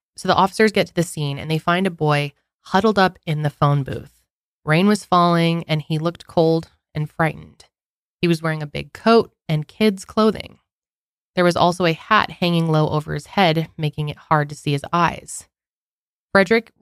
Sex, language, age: female, English, 20-39